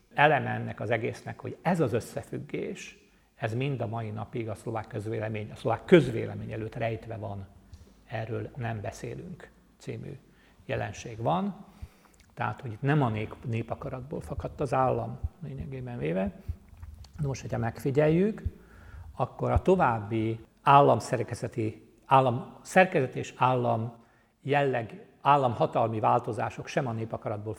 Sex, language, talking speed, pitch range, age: male, Hungarian, 120 wpm, 115-145 Hz, 50-69